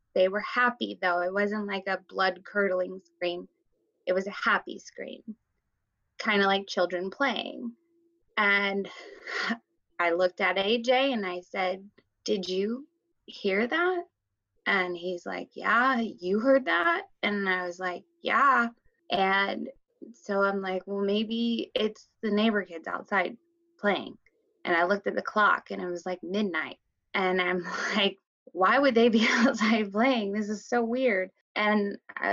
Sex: female